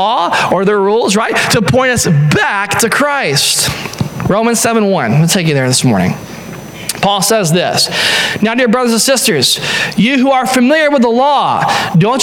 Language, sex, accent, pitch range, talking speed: English, male, American, 165-220 Hz, 175 wpm